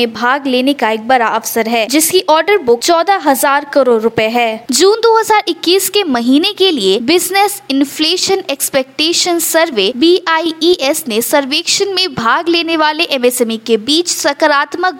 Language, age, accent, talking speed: Hindi, 20-39, native, 150 wpm